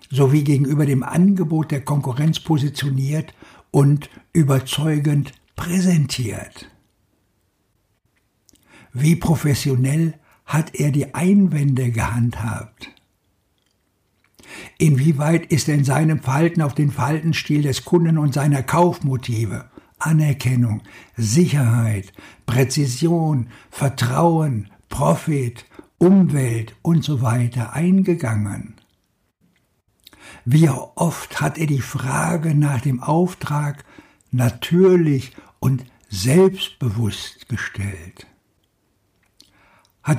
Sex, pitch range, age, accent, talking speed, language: male, 120-155 Hz, 60-79, German, 80 wpm, German